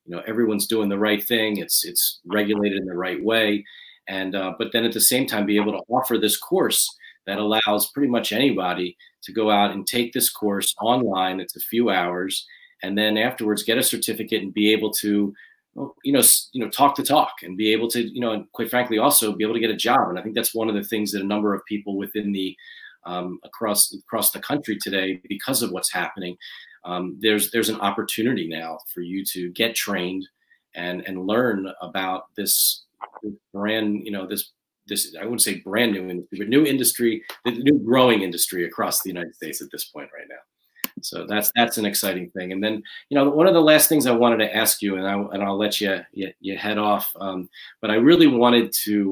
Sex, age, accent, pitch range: male, 30-49, American, 95-115 Hz